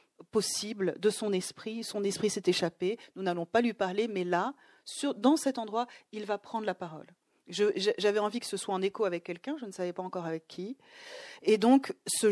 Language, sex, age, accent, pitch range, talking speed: French, female, 40-59, French, 175-245 Hz, 220 wpm